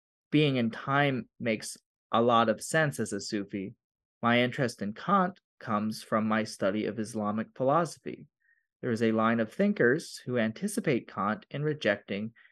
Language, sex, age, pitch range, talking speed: English, male, 30-49, 110-125 Hz, 160 wpm